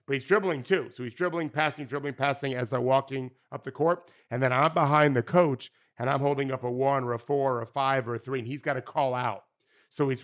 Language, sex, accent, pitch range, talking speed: English, male, American, 120-145 Hz, 265 wpm